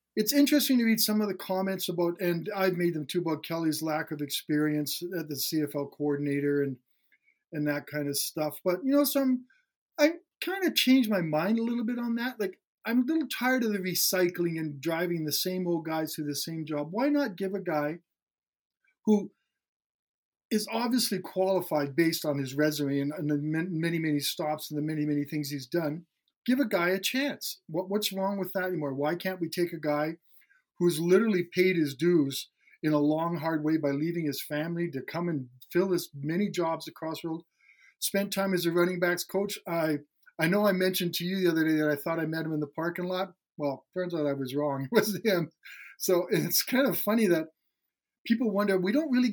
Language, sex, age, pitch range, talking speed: English, male, 50-69, 155-205 Hz, 215 wpm